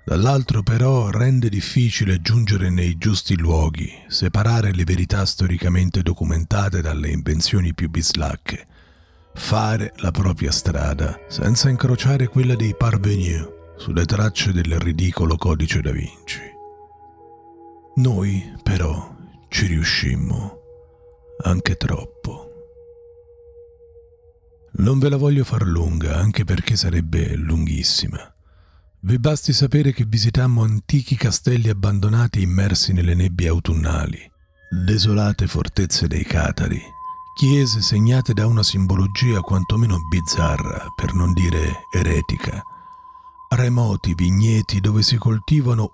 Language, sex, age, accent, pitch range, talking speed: Italian, male, 50-69, native, 85-125 Hz, 105 wpm